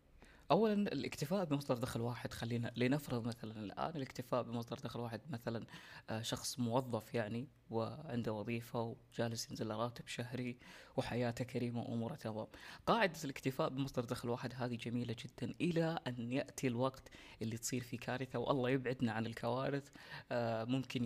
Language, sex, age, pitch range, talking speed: Arabic, female, 20-39, 115-130 Hz, 135 wpm